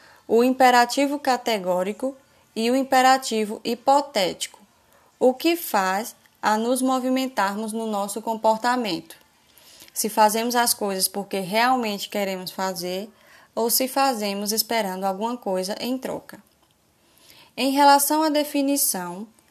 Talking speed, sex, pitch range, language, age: 110 wpm, female, 205-255 Hz, Portuguese, 10-29